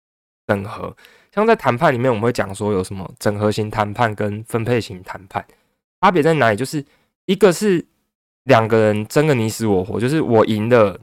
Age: 20-39